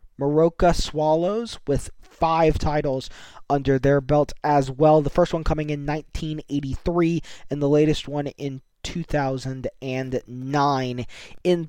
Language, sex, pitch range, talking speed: English, male, 135-160 Hz, 120 wpm